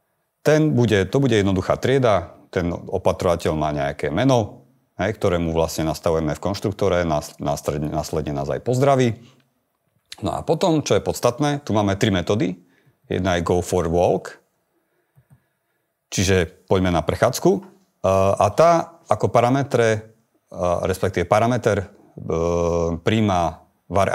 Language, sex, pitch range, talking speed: Slovak, male, 85-125 Hz, 120 wpm